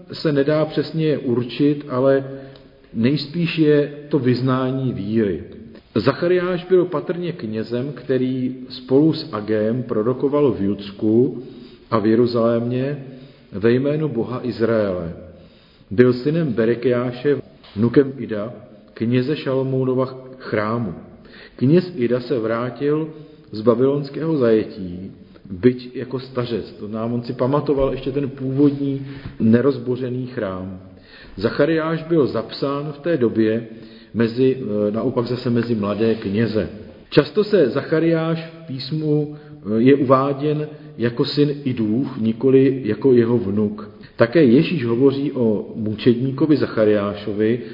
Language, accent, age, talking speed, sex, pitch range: Czech, native, 40-59, 115 wpm, male, 115-145 Hz